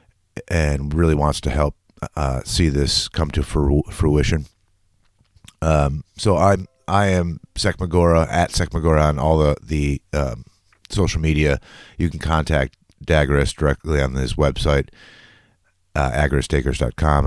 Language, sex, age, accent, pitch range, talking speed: English, male, 30-49, American, 70-85 Hz, 125 wpm